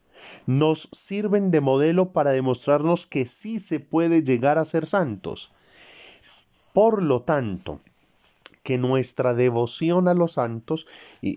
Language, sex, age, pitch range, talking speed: Spanish, male, 30-49, 105-155 Hz, 125 wpm